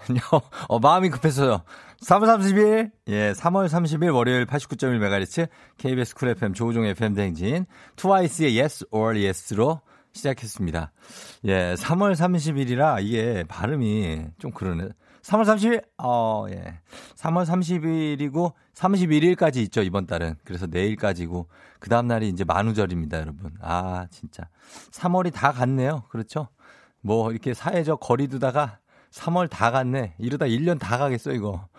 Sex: male